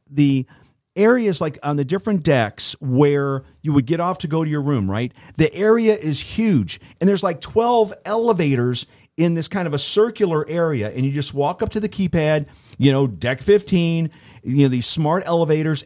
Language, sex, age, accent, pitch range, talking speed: English, male, 40-59, American, 130-165 Hz, 195 wpm